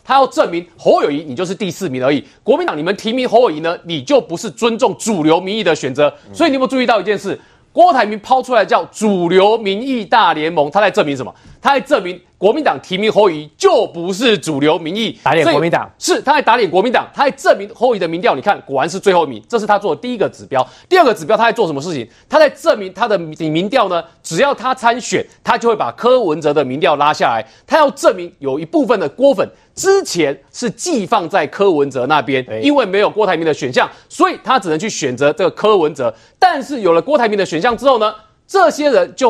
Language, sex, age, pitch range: Chinese, male, 30-49, 170-275 Hz